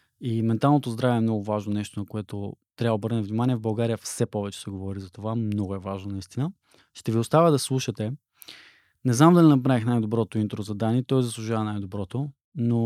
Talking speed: 195 wpm